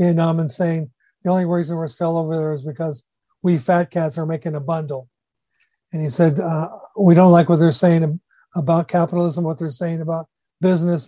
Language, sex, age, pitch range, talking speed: English, male, 50-69, 155-175 Hz, 195 wpm